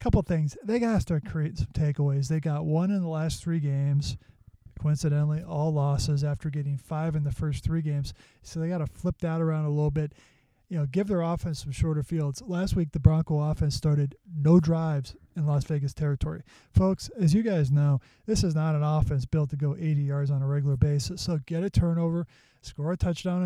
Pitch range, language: 145-170 Hz, English